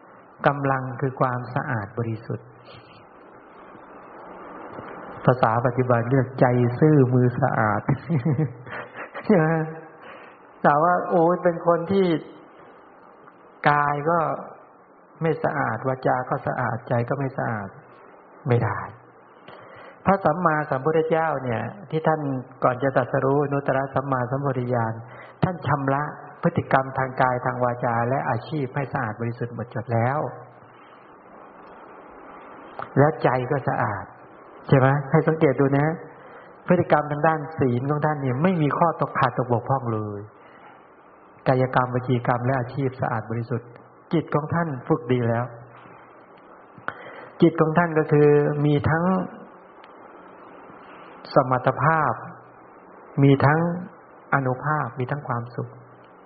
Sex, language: male, English